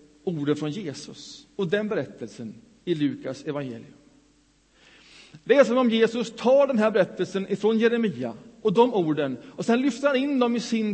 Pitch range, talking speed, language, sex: 185-235 Hz, 170 wpm, Swedish, male